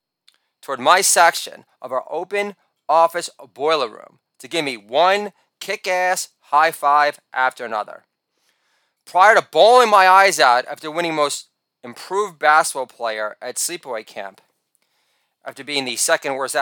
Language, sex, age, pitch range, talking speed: English, male, 30-49, 135-180 Hz, 135 wpm